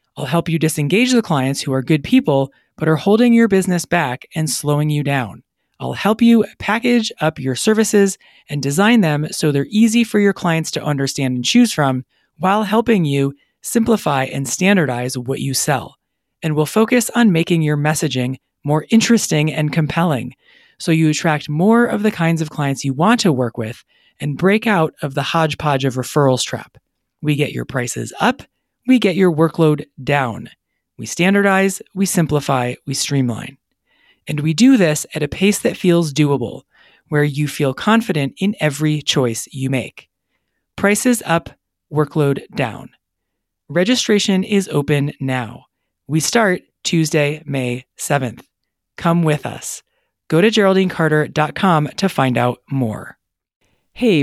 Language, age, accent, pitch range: English, 30-49, American, 140-195 Hz